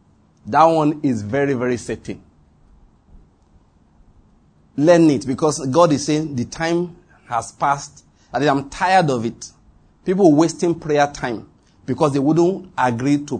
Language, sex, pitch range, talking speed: English, male, 115-155 Hz, 135 wpm